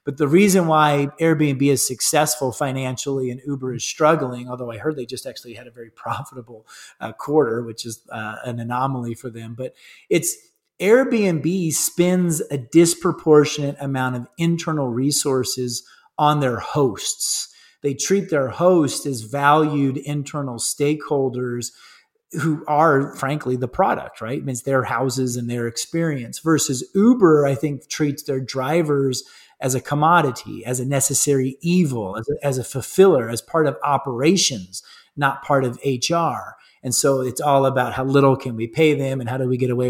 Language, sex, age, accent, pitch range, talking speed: English, male, 30-49, American, 125-155 Hz, 165 wpm